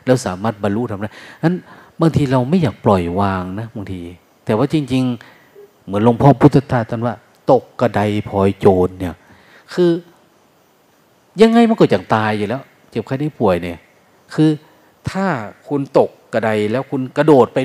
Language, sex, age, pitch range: Thai, male, 30-49, 100-135 Hz